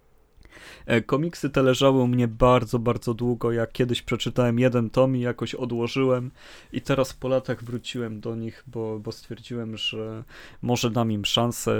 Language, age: Polish, 30-49